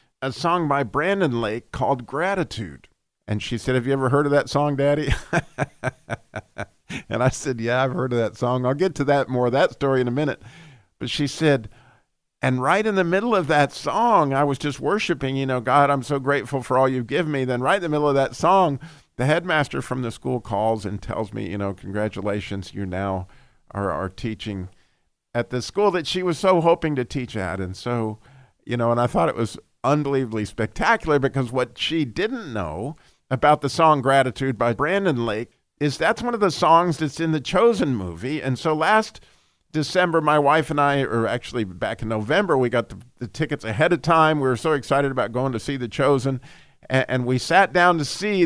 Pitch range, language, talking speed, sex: 120-150 Hz, English, 210 wpm, male